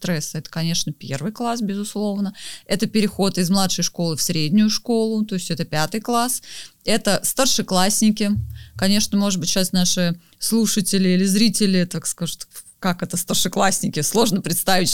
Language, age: Russian, 30-49